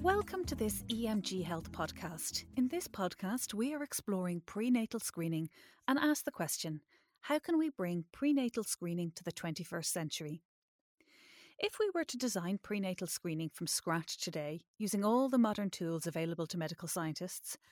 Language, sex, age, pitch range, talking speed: English, female, 30-49, 175-255 Hz, 160 wpm